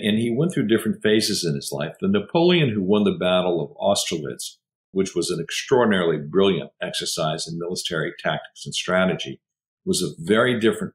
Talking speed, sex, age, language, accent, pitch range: 175 wpm, male, 50-69, English, American, 85-120 Hz